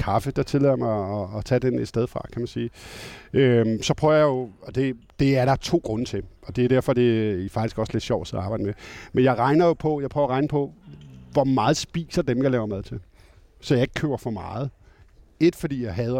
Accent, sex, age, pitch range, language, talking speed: native, male, 50-69, 115-140 Hz, Danish, 250 wpm